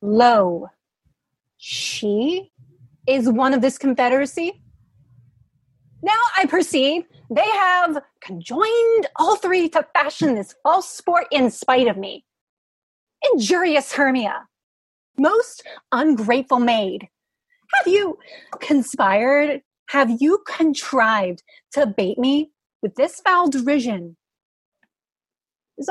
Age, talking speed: 30-49, 100 wpm